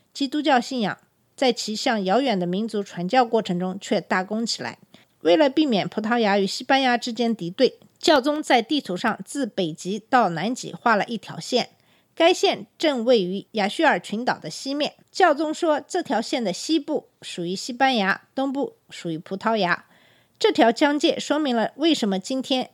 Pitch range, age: 195-270 Hz, 50-69